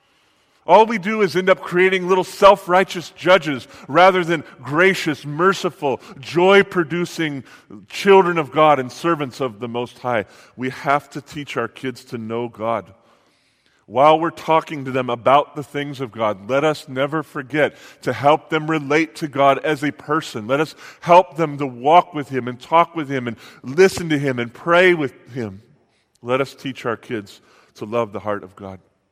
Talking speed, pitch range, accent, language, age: 180 wpm, 125-155 Hz, American, English, 40-59